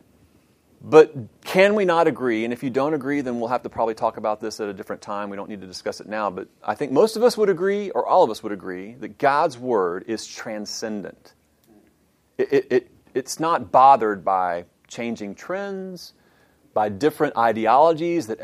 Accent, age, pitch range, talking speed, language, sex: American, 40-59, 120-180 Hz, 200 wpm, English, male